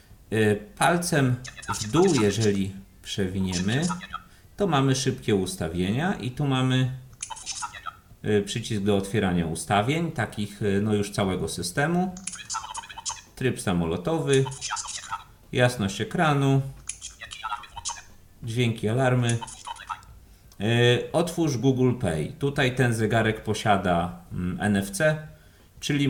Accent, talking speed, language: native, 85 wpm, Polish